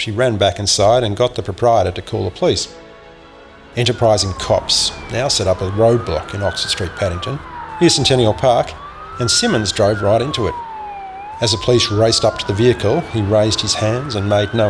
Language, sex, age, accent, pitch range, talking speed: English, male, 40-59, Australian, 100-120 Hz, 190 wpm